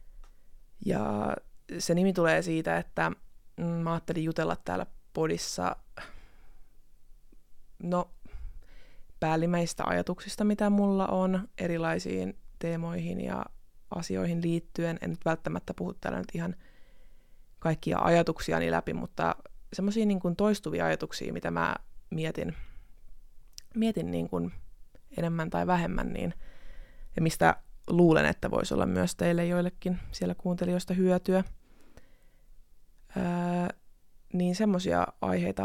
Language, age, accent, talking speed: Finnish, 20-39, native, 105 wpm